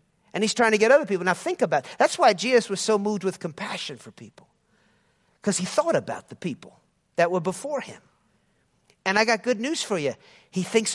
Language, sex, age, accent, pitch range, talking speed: English, male, 50-69, American, 180-260 Hz, 220 wpm